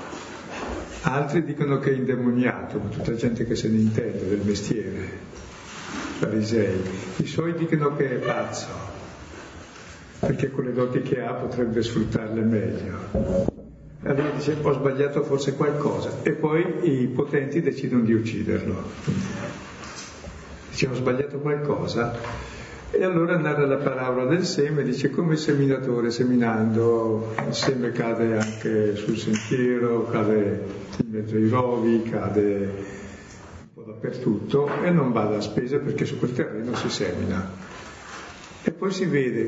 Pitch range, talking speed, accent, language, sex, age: 110-145 Hz, 140 wpm, native, Italian, male, 50-69